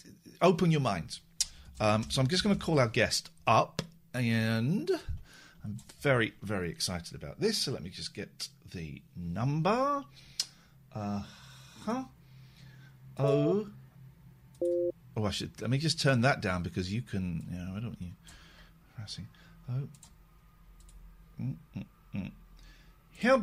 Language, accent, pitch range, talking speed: English, British, 115-170 Hz, 125 wpm